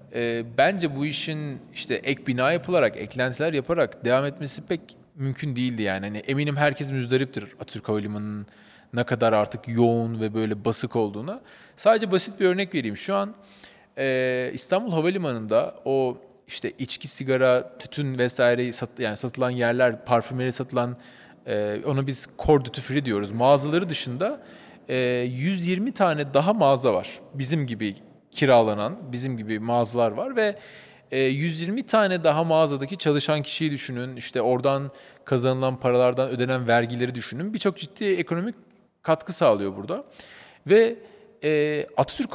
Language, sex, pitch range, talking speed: Turkish, male, 125-175 Hz, 135 wpm